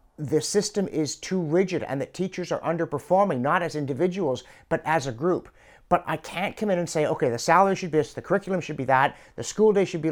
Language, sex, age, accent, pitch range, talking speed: English, male, 50-69, American, 125-185 Hz, 235 wpm